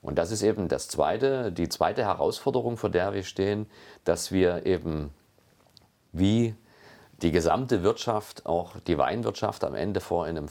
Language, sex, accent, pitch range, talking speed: German, male, German, 85-105 Hz, 145 wpm